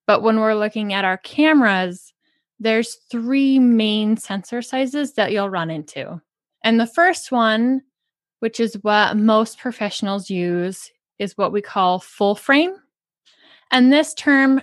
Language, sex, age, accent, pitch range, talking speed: English, female, 20-39, American, 200-255 Hz, 145 wpm